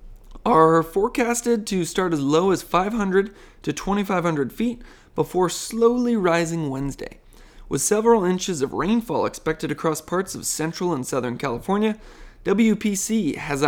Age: 20-39